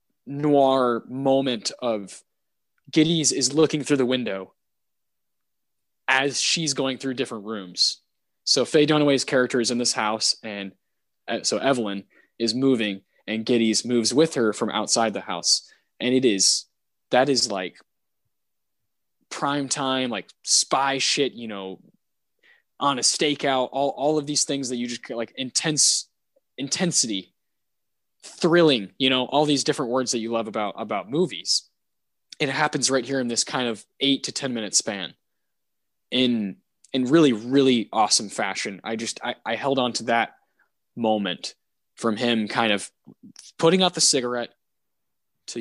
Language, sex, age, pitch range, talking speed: English, male, 20-39, 115-140 Hz, 150 wpm